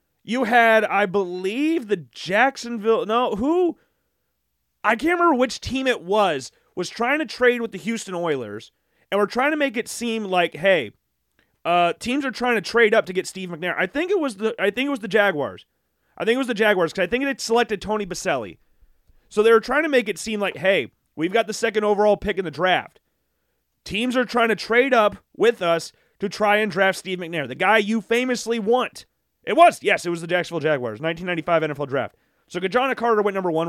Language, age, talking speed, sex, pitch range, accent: English, 30-49, 220 wpm, male, 180-245 Hz, American